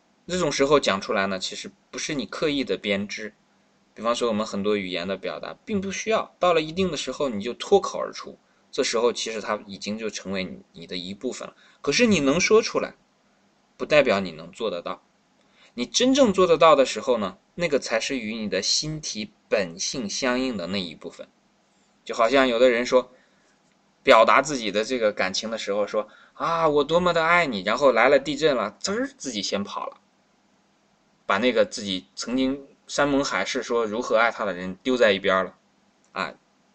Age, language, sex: 20-39, Chinese, male